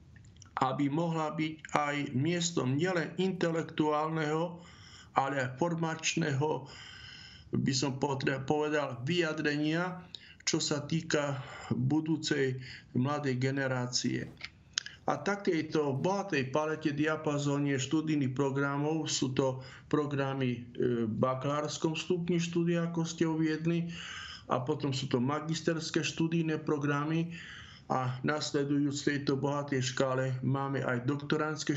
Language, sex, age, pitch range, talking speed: Slovak, male, 50-69, 130-155 Hz, 95 wpm